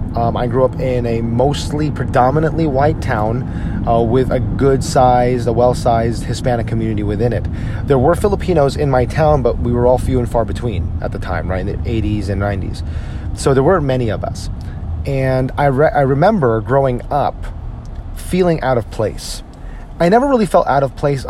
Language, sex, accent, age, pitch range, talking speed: English, male, American, 30-49, 105-140 Hz, 190 wpm